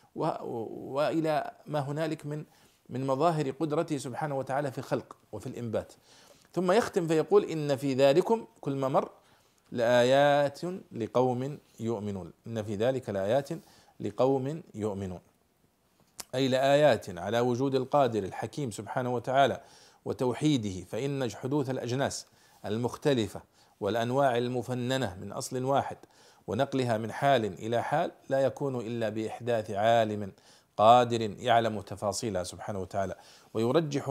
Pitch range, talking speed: 115-150 Hz, 115 wpm